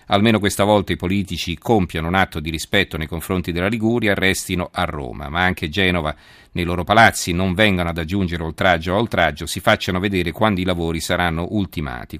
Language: Italian